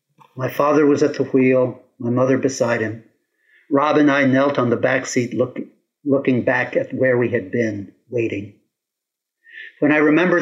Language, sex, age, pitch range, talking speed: English, male, 50-69, 120-150 Hz, 165 wpm